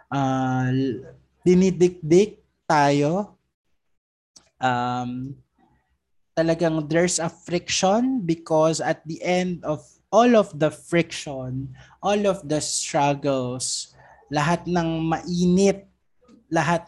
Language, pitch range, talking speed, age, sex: Filipino, 135-160 Hz, 90 wpm, 20-39, male